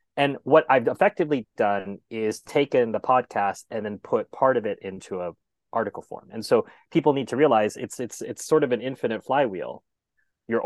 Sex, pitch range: male, 105-135 Hz